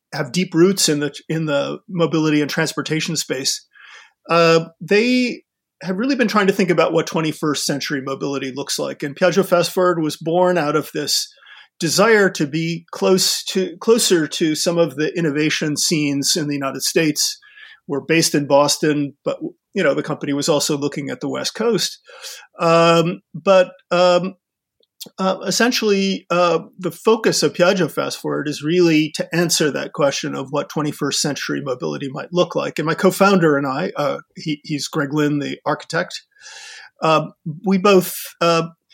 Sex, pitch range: male, 150-190 Hz